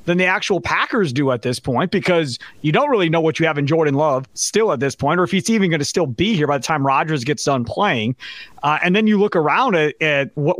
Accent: American